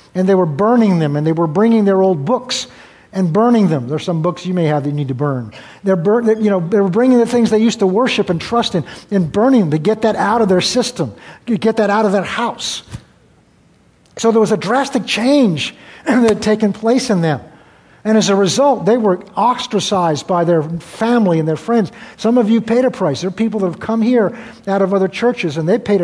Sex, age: male, 50-69